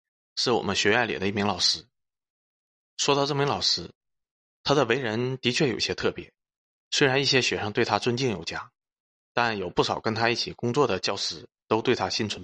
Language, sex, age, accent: Chinese, male, 20-39, native